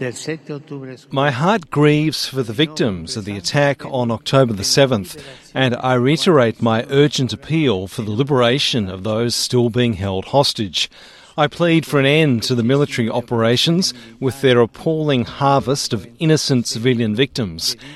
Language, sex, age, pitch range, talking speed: Persian, male, 40-59, 115-145 Hz, 150 wpm